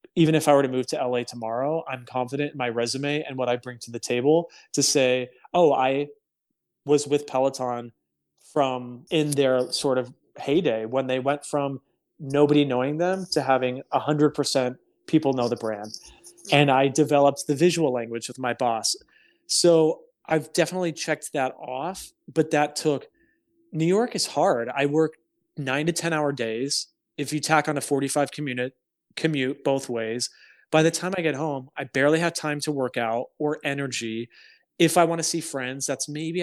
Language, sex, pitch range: English, male, 125-160 Hz